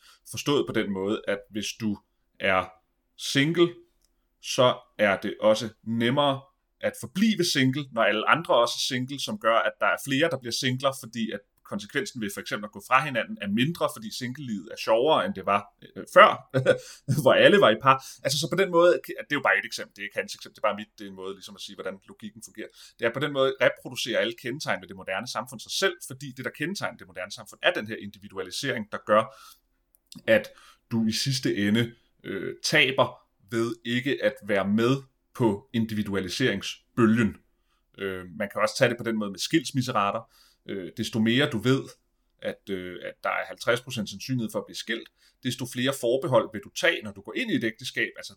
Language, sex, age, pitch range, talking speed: Danish, male, 30-49, 105-135 Hz, 215 wpm